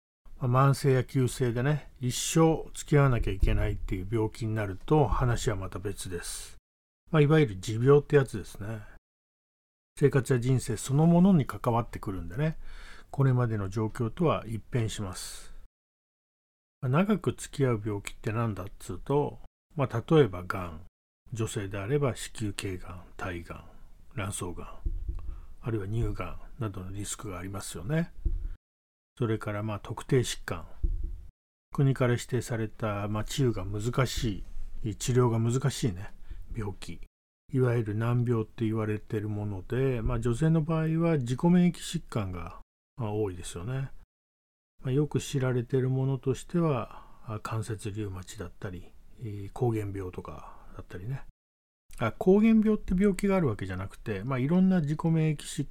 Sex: male